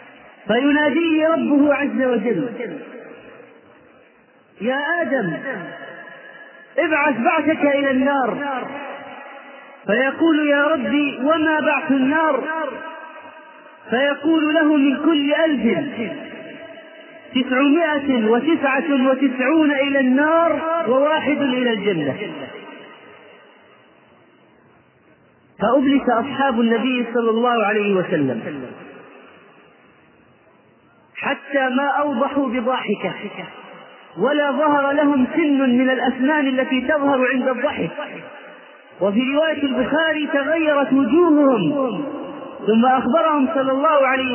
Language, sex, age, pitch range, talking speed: Arabic, male, 30-49, 260-305 Hz, 80 wpm